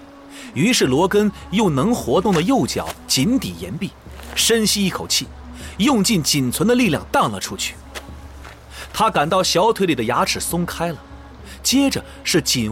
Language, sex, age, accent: Chinese, male, 30-49, native